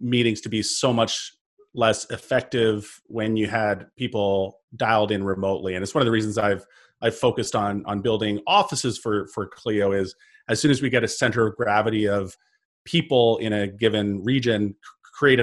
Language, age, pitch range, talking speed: English, 30-49, 105-125 Hz, 185 wpm